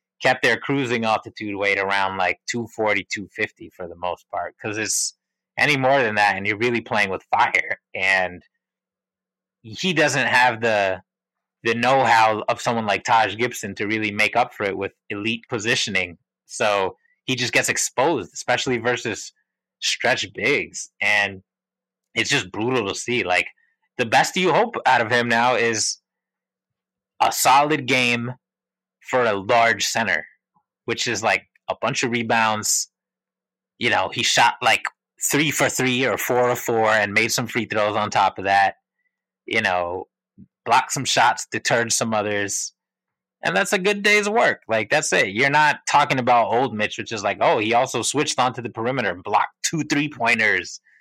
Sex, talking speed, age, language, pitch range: male, 170 wpm, 30-49, English, 105-130 Hz